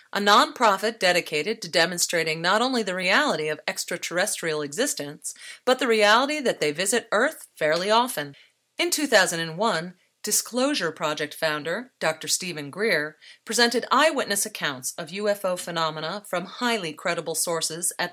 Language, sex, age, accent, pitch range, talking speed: English, female, 40-59, American, 165-230 Hz, 130 wpm